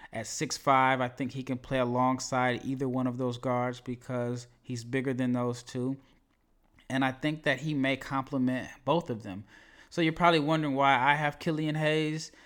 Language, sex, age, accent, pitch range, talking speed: English, male, 20-39, American, 125-140 Hz, 185 wpm